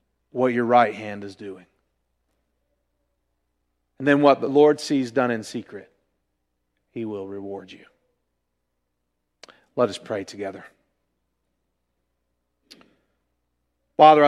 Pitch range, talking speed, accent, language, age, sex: 95-150 Hz, 100 wpm, American, English, 40-59, male